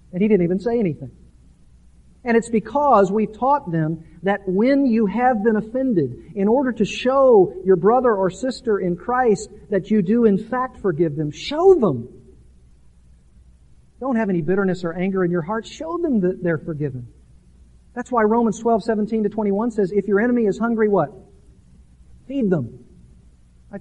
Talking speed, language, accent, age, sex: 170 wpm, English, American, 50-69, male